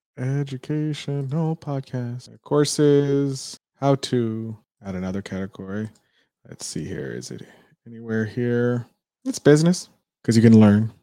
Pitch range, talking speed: 105-140 Hz, 120 wpm